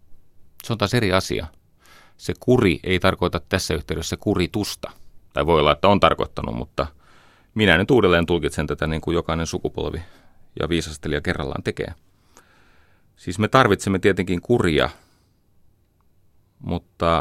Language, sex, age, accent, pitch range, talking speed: Finnish, male, 30-49, native, 80-100 Hz, 135 wpm